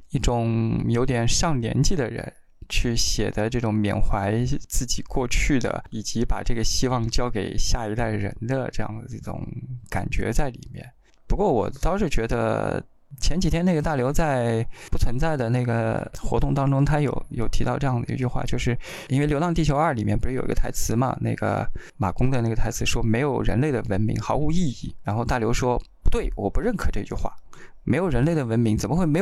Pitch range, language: 110-135 Hz, Chinese